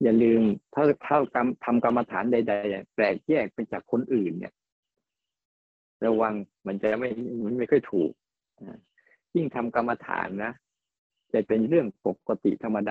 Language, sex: Thai, male